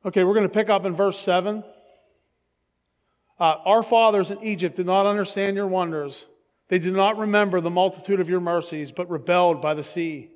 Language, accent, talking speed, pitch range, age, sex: English, American, 190 wpm, 165-200 Hz, 40-59, male